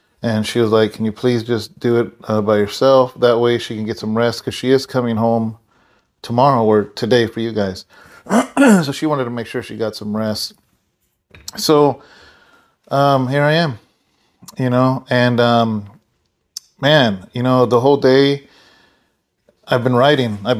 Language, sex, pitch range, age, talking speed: English, male, 115-130 Hz, 30-49, 175 wpm